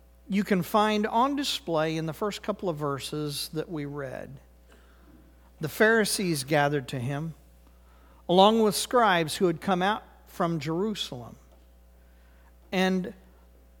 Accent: American